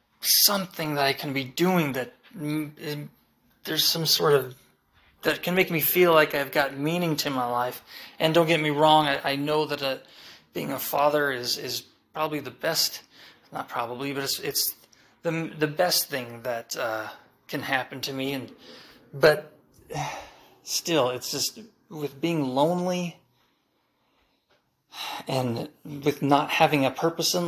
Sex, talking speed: male, 155 wpm